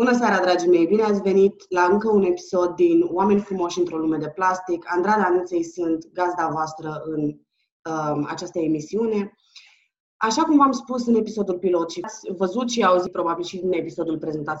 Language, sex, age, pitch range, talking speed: Romanian, female, 20-39, 160-225 Hz, 180 wpm